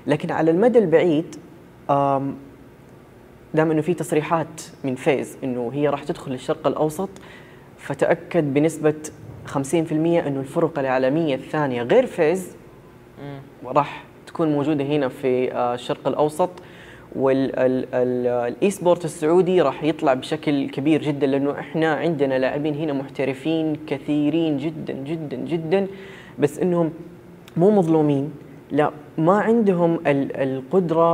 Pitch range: 135-165 Hz